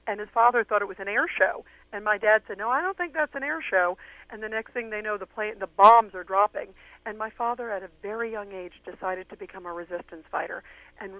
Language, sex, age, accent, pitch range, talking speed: English, female, 50-69, American, 185-245 Hz, 255 wpm